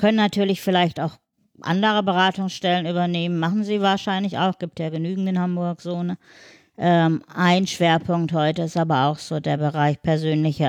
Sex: female